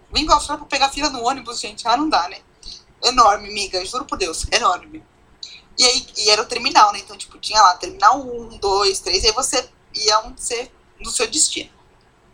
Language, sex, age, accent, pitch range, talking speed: Portuguese, female, 20-39, Brazilian, 230-385 Hz, 205 wpm